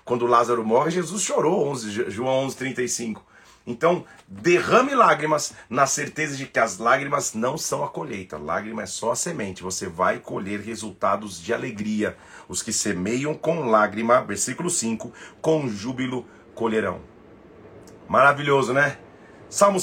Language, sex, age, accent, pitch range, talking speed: Portuguese, male, 40-59, Brazilian, 120-160 Hz, 135 wpm